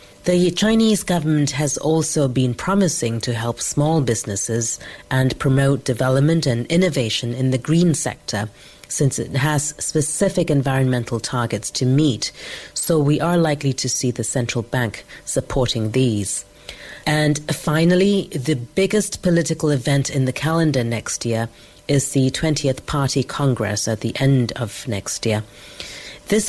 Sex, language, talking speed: female, English, 140 wpm